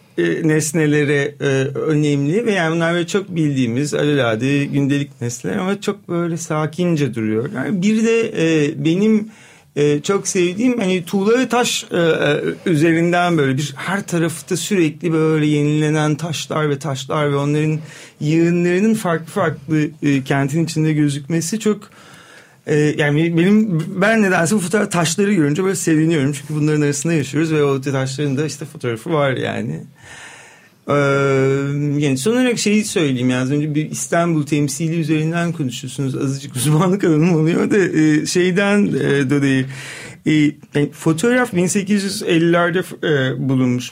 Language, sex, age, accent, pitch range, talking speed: Turkish, male, 40-59, native, 145-200 Hz, 135 wpm